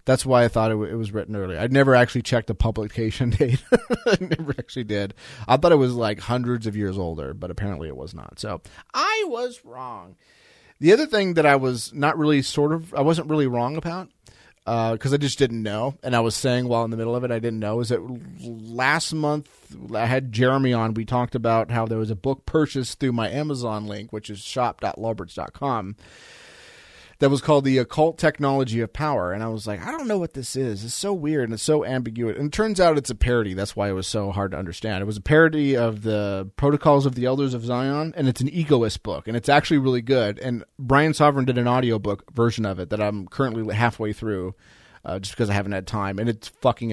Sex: male